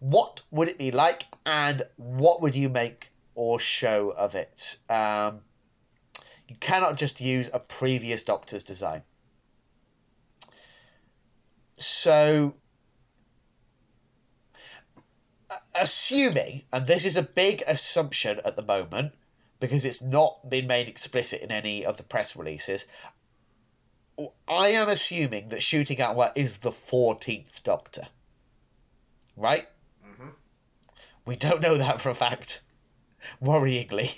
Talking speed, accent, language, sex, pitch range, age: 115 wpm, British, English, male, 115-145 Hz, 30-49